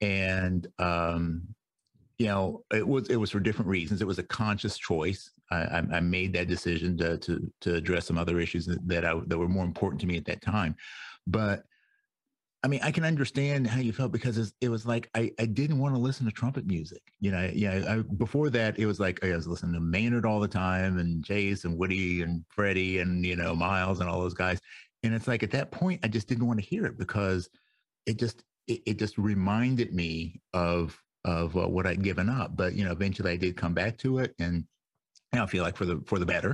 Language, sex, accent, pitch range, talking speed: English, male, American, 85-115 Hz, 230 wpm